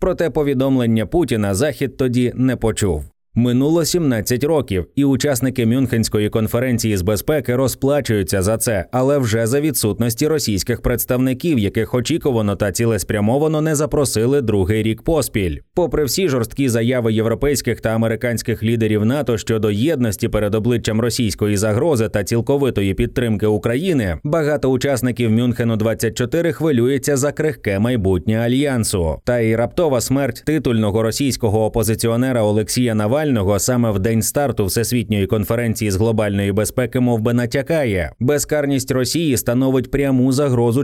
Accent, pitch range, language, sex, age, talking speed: native, 110-135 Hz, Ukrainian, male, 20-39, 130 wpm